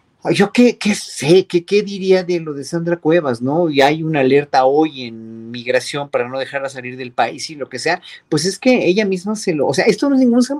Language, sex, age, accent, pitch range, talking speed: Spanish, male, 40-59, Mexican, 140-195 Hz, 245 wpm